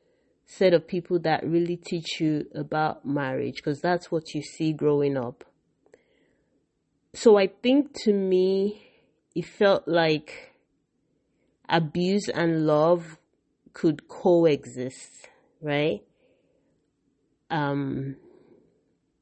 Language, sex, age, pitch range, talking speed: English, female, 30-49, 145-175 Hz, 95 wpm